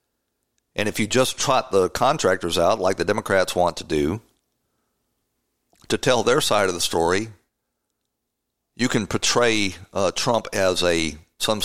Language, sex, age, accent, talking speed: English, male, 50-69, American, 150 wpm